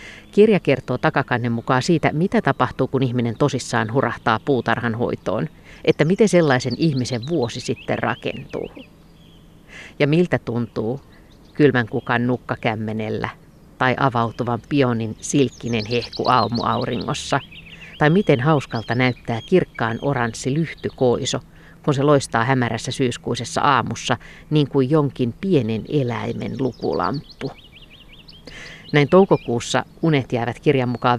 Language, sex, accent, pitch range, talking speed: Finnish, female, native, 120-150 Hz, 110 wpm